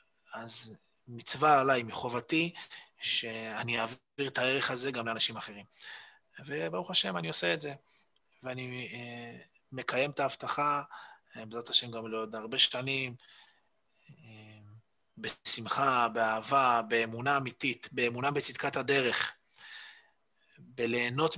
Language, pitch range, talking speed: Hebrew, 115-150 Hz, 100 wpm